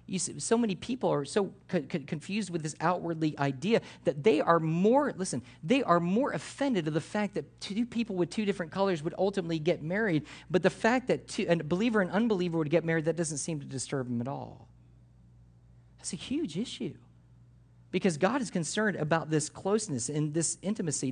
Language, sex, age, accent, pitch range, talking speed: English, male, 40-59, American, 125-170 Hz, 200 wpm